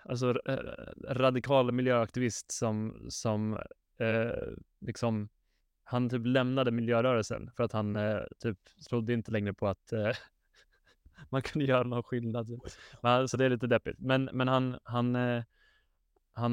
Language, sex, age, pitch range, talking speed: Swedish, male, 20-39, 110-125 Hz, 140 wpm